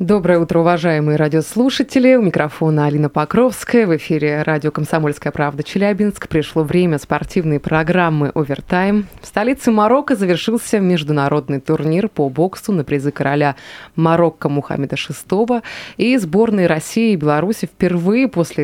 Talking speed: 130 wpm